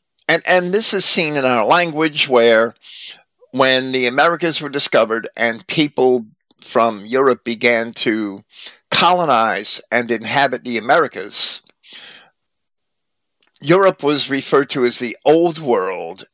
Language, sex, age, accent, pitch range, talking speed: English, male, 50-69, American, 120-150 Hz, 120 wpm